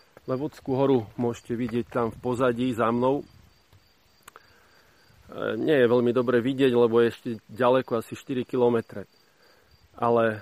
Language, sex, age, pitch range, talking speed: Slovak, male, 40-59, 115-140 Hz, 125 wpm